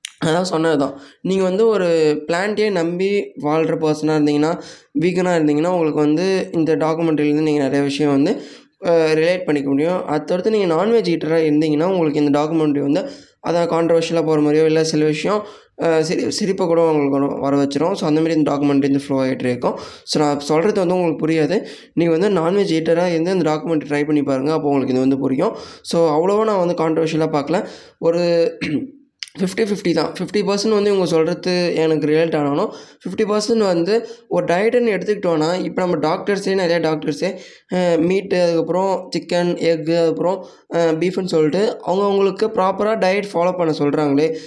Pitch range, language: 155-185 Hz, Tamil